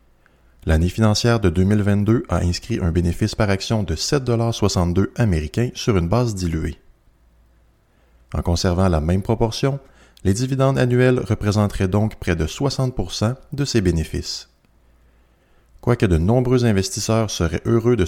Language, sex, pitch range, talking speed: French, male, 85-125 Hz, 135 wpm